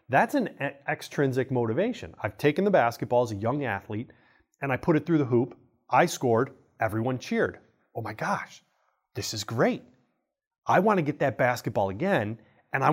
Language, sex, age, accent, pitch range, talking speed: English, male, 30-49, American, 115-160 Hz, 175 wpm